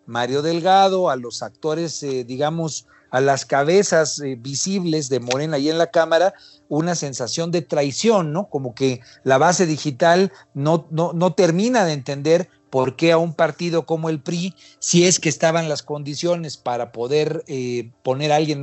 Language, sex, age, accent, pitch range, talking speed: Spanish, male, 50-69, Mexican, 135-175 Hz, 175 wpm